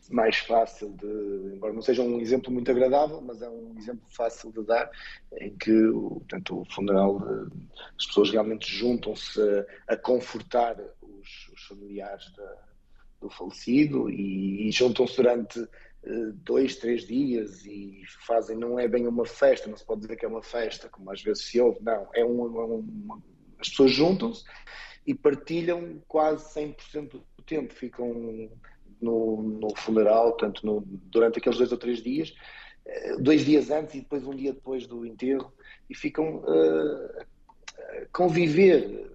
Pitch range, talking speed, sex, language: 110-145 Hz, 155 wpm, male, Portuguese